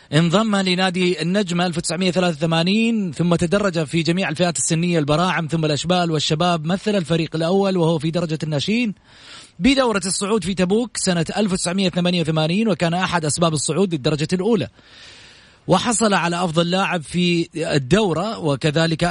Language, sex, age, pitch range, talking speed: Arabic, male, 30-49, 165-190 Hz, 125 wpm